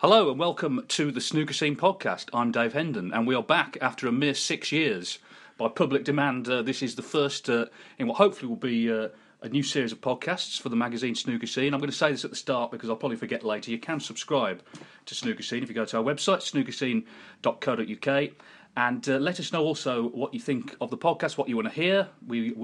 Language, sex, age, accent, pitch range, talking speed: English, male, 40-59, British, 125-160 Hz, 240 wpm